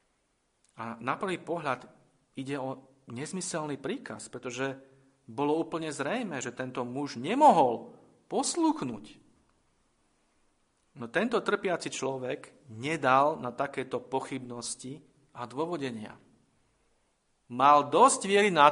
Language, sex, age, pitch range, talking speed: Slovak, male, 40-59, 120-155 Hz, 100 wpm